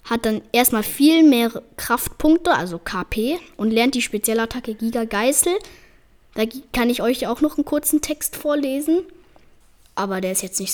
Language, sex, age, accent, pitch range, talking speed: German, female, 10-29, German, 210-285 Hz, 170 wpm